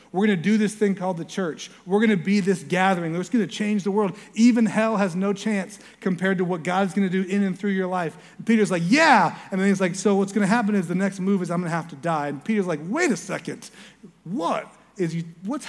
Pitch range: 165-215 Hz